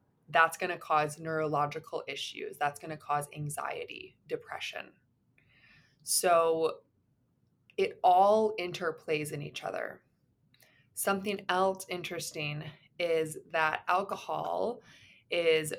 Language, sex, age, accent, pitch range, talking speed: English, female, 20-39, American, 155-190 Hz, 100 wpm